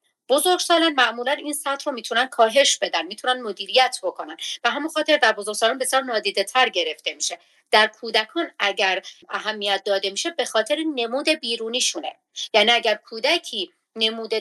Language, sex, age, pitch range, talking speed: Persian, female, 40-59, 190-245 Hz, 145 wpm